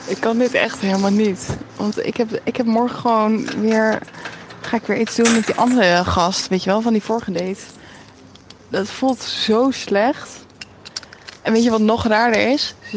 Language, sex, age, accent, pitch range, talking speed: Dutch, female, 20-39, Dutch, 190-235 Hz, 190 wpm